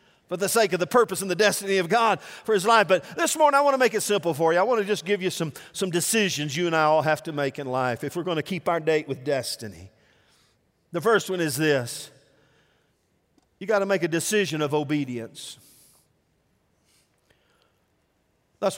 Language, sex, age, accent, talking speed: English, male, 50-69, American, 210 wpm